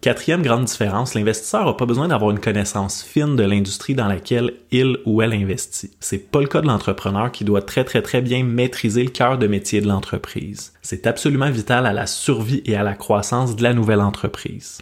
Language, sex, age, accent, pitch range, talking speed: French, male, 20-39, Canadian, 105-125 Hz, 210 wpm